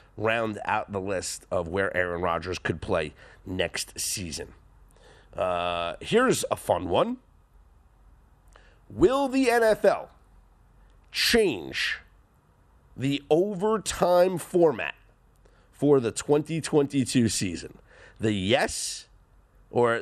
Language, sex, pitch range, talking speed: English, male, 115-170 Hz, 95 wpm